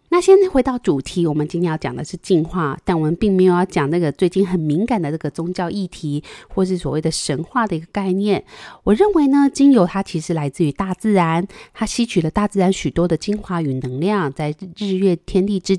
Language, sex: Chinese, female